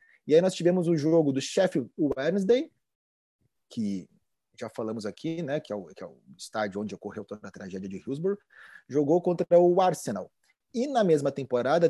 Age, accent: 30-49, Brazilian